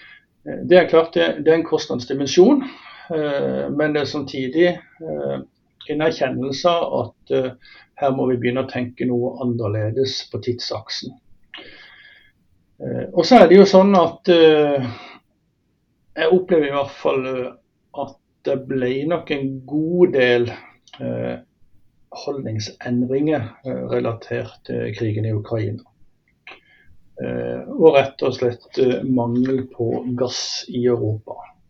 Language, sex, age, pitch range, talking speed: English, male, 60-79, 115-160 Hz, 110 wpm